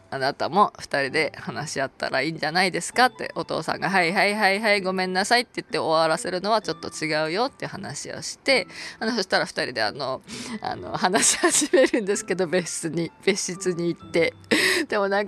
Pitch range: 155-215 Hz